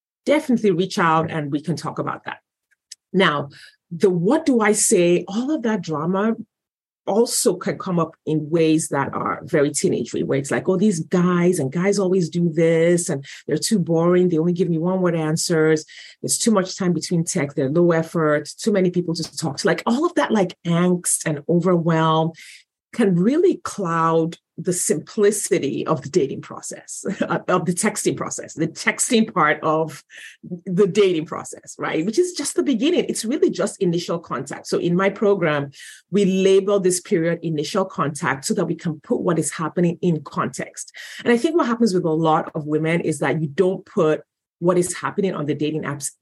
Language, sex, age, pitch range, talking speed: English, female, 30-49, 155-195 Hz, 190 wpm